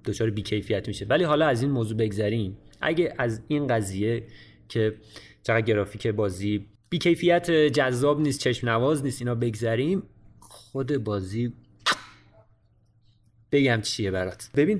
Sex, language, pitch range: male, Persian, 110-145 Hz